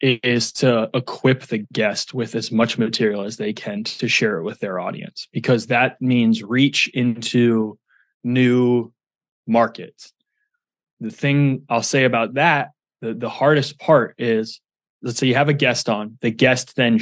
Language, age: English, 20-39